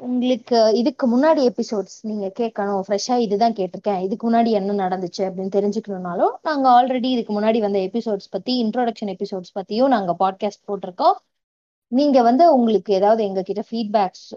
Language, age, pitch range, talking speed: Tamil, 20-39, 195-245 Hz, 140 wpm